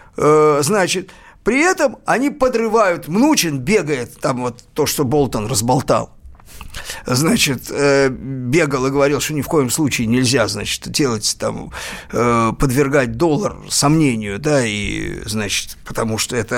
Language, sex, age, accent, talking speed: Russian, male, 50-69, native, 125 wpm